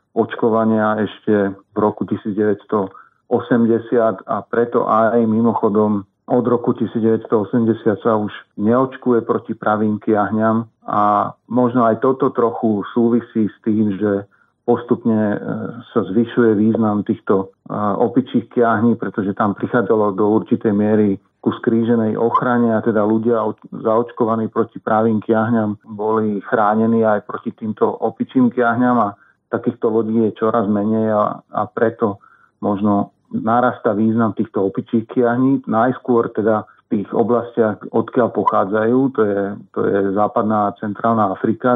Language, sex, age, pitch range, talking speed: Slovak, male, 40-59, 105-115 Hz, 125 wpm